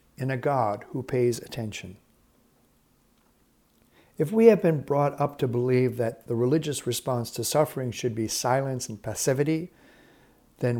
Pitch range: 120-150 Hz